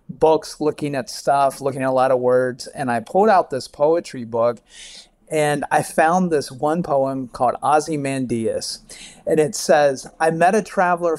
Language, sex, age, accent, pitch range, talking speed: English, male, 40-59, American, 135-175 Hz, 170 wpm